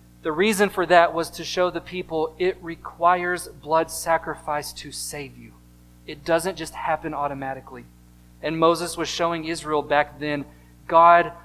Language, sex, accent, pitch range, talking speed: English, male, American, 150-190 Hz, 150 wpm